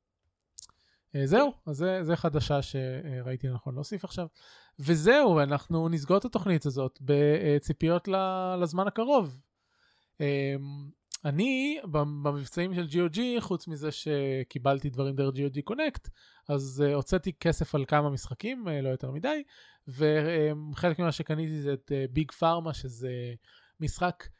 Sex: male